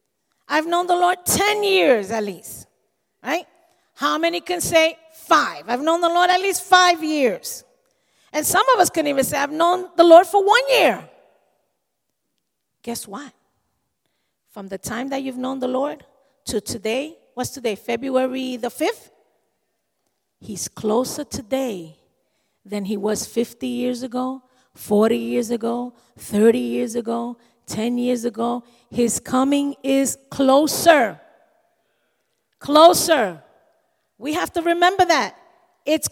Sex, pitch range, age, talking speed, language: female, 235-335 Hz, 40-59, 135 wpm, English